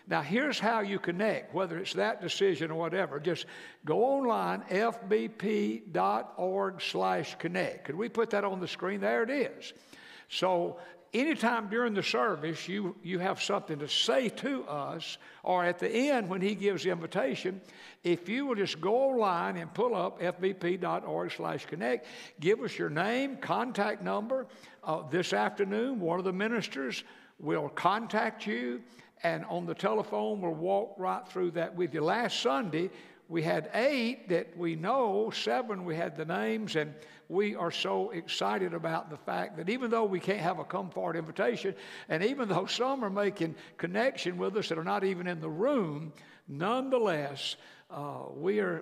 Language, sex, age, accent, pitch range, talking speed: English, male, 60-79, American, 170-220 Hz, 165 wpm